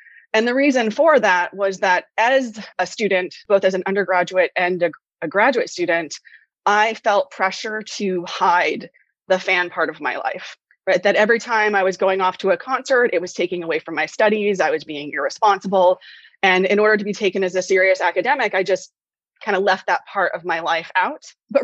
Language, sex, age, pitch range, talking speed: English, female, 20-39, 185-220 Hz, 205 wpm